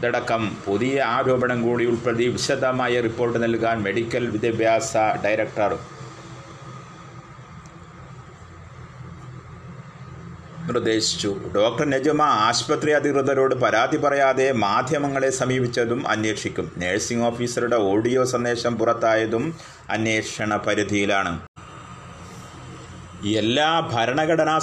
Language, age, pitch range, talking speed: Malayalam, 30-49, 115-140 Hz, 70 wpm